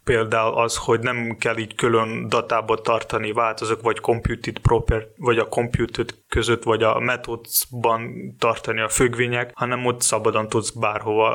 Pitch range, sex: 110-125 Hz, male